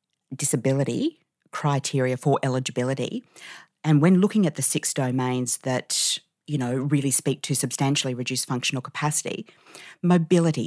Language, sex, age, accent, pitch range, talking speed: English, female, 40-59, Australian, 130-165 Hz, 125 wpm